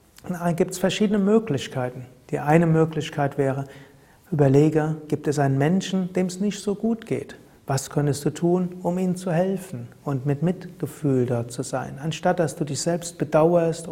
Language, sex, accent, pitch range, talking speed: German, male, German, 140-185 Hz, 170 wpm